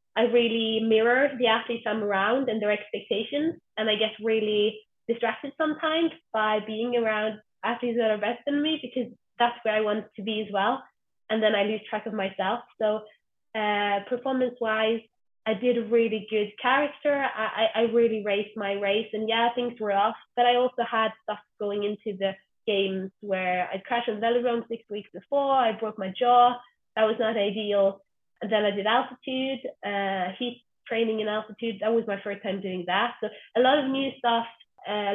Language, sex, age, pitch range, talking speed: English, female, 20-39, 205-240 Hz, 190 wpm